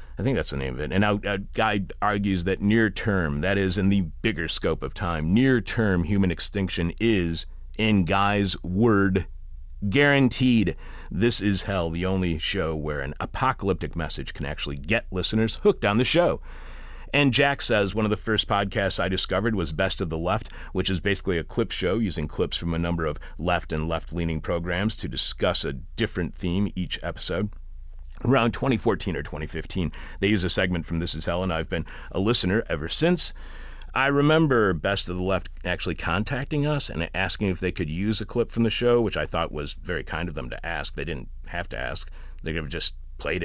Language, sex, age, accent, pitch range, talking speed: English, male, 40-59, American, 80-105 Hz, 200 wpm